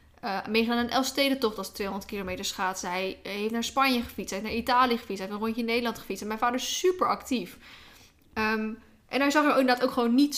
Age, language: 10-29, Dutch